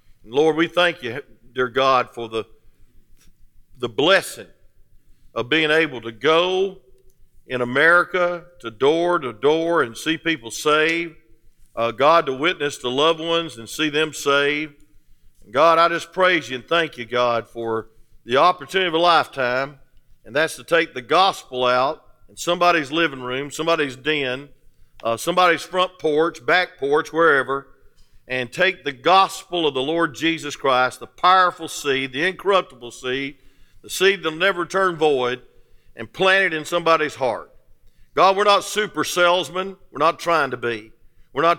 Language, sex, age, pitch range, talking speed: English, male, 50-69, 125-170 Hz, 160 wpm